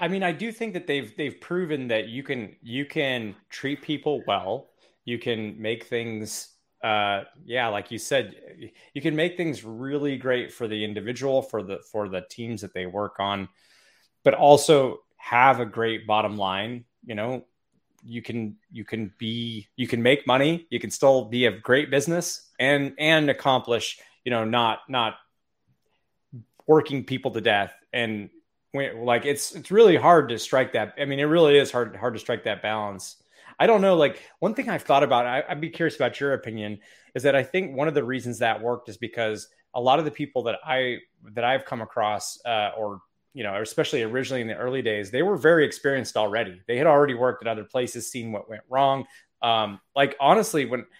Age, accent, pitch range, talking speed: 30-49, American, 110-145 Hz, 200 wpm